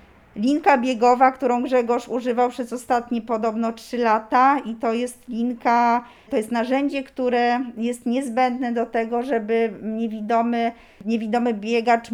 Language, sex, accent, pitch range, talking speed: Polish, female, native, 215-250 Hz, 130 wpm